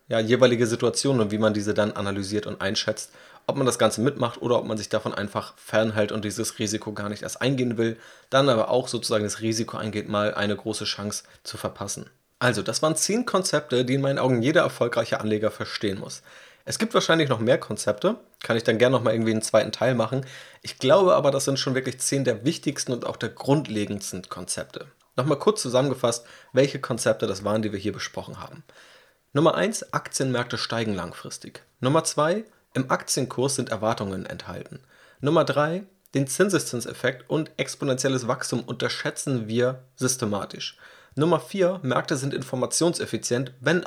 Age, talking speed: 30-49, 175 wpm